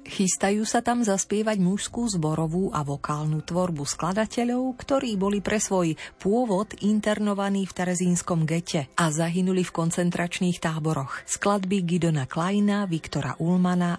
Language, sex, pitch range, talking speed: Slovak, female, 160-200 Hz, 125 wpm